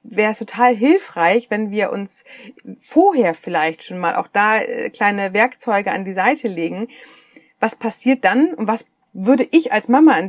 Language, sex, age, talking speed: German, female, 30-49, 170 wpm